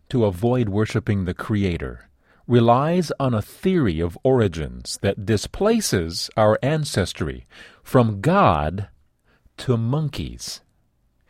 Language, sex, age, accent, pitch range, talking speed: English, male, 40-59, American, 95-140 Hz, 100 wpm